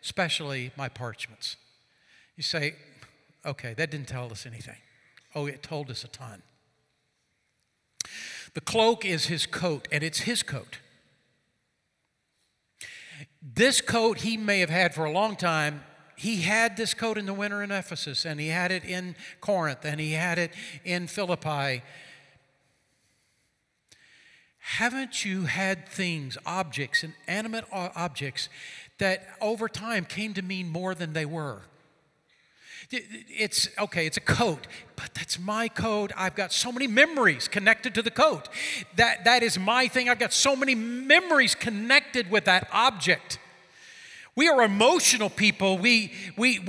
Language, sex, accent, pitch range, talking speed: English, male, American, 155-230 Hz, 145 wpm